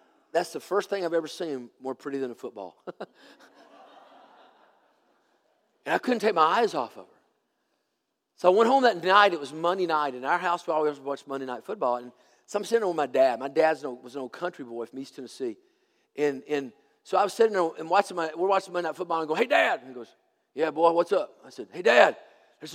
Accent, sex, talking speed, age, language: American, male, 235 wpm, 40-59, English